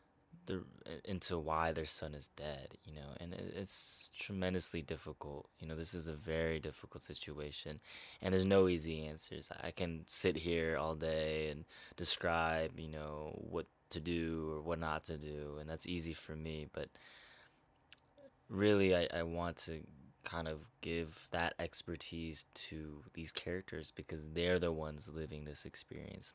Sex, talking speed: male, 155 wpm